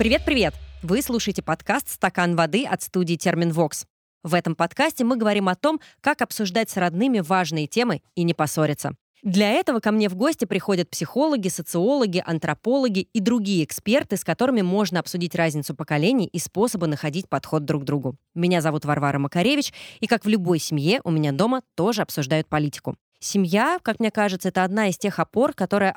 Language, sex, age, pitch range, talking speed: Russian, female, 20-39, 155-215 Hz, 175 wpm